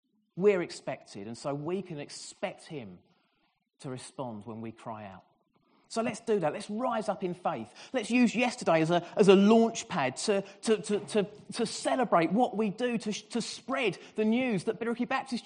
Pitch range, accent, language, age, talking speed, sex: 160-235 Hz, British, English, 30-49, 190 wpm, male